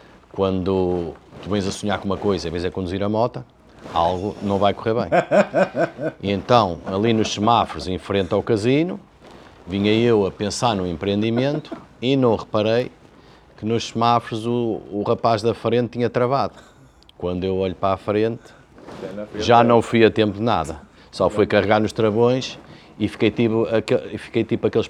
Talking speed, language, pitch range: 175 wpm, Portuguese, 100-135 Hz